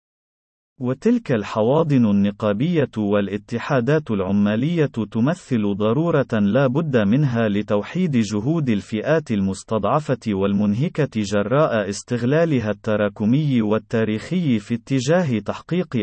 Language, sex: Arabic, male